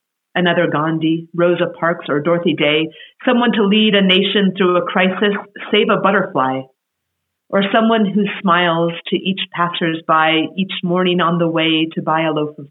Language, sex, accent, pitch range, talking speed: English, female, American, 155-195 Hz, 165 wpm